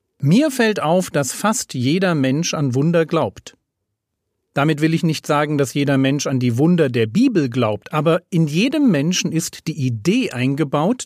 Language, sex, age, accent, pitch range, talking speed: German, male, 40-59, German, 120-180 Hz, 175 wpm